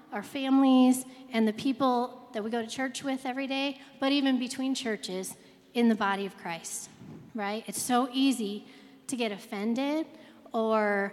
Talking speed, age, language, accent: 160 wpm, 30-49, English, American